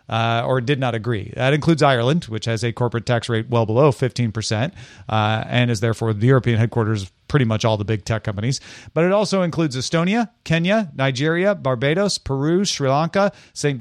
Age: 40-59